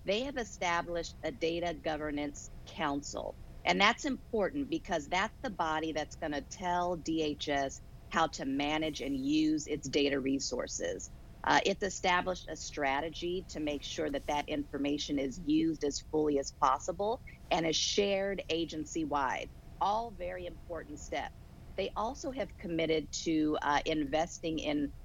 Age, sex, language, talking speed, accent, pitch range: 50-69, female, English, 145 wpm, American, 145-180 Hz